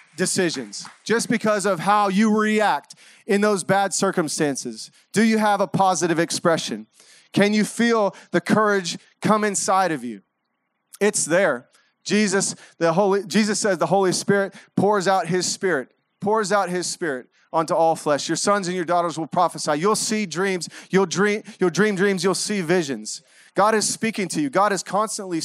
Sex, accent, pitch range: male, American, 160-205 Hz